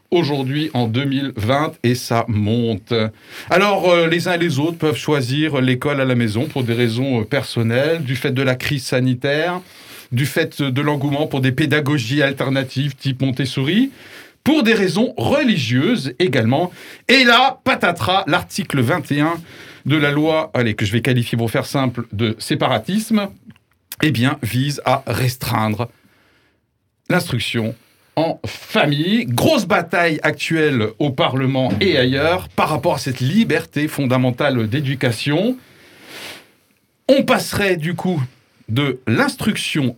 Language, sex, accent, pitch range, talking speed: French, male, French, 125-170 Hz, 135 wpm